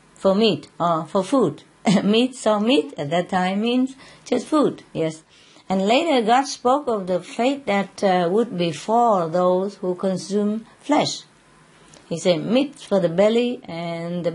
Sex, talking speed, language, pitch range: female, 160 wpm, English, 170-235 Hz